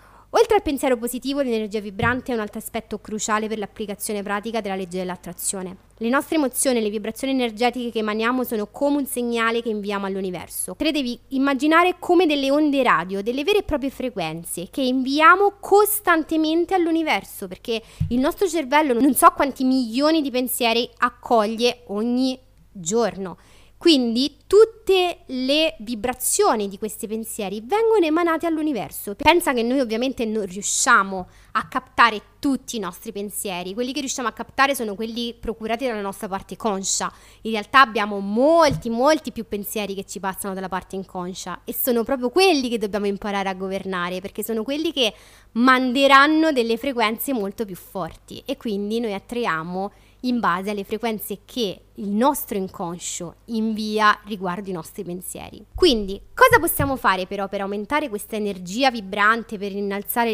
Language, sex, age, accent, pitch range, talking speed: Italian, female, 20-39, native, 200-270 Hz, 155 wpm